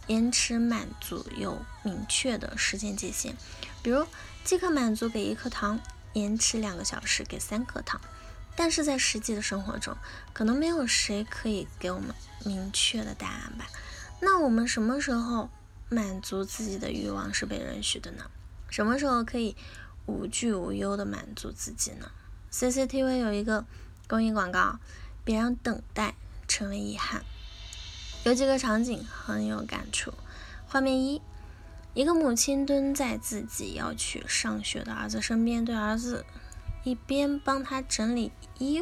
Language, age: Chinese, 10-29